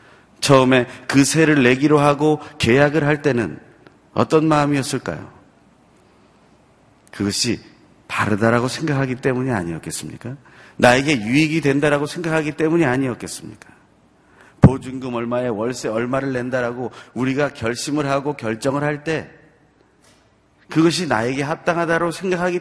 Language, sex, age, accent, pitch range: Korean, male, 40-59, native, 105-145 Hz